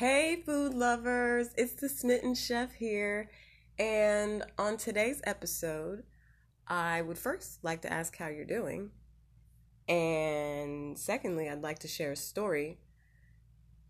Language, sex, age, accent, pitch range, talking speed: English, female, 20-39, American, 135-205 Hz, 125 wpm